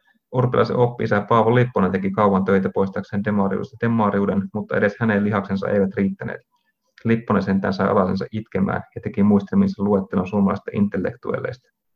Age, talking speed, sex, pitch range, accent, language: 30-49, 140 wpm, male, 100-115 Hz, native, Finnish